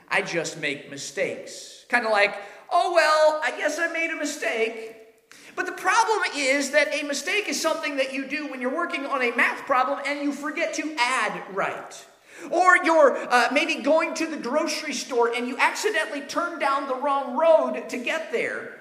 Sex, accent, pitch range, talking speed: male, American, 235-335 Hz, 190 wpm